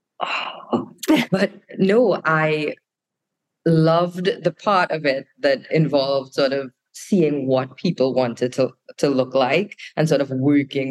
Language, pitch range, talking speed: English, 140-180 Hz, 130 wpm